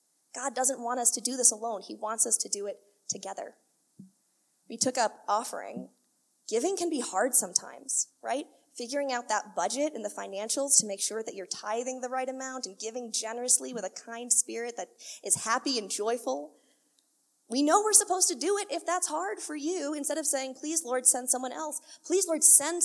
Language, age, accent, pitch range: English, 20-39, American, 220-305 Hz